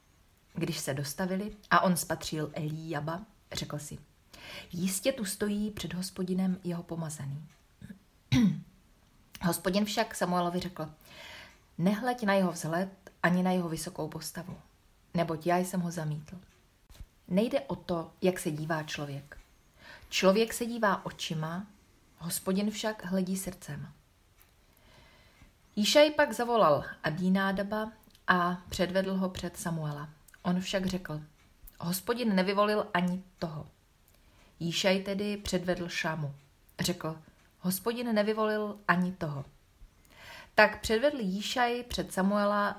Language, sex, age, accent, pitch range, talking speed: Czech, female, 30-49, native, 155-200 Hz, 110 wpm